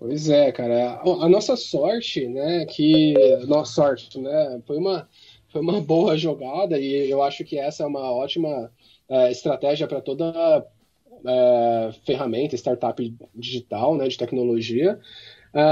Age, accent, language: 20-39, Brazilian, Portuguese